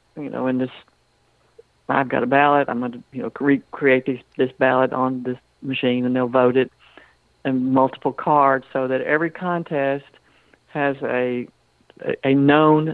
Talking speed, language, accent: 160 wpm, English, American